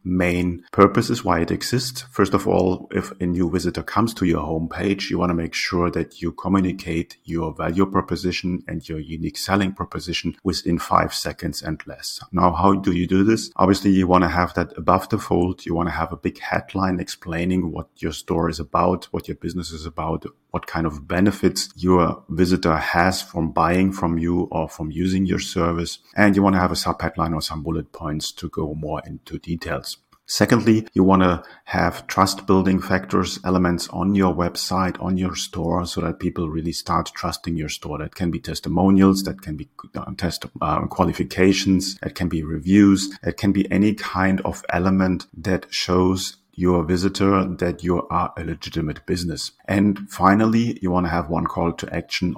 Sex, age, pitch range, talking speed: male, 40-59, 85-95 Hz, 185 wpm